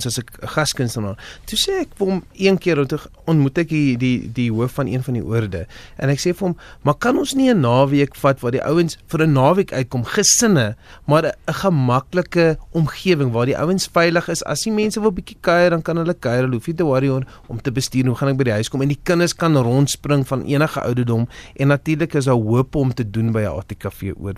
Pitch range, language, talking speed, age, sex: 120-165 Hz, Dutch, 235 wpm, 30-49, male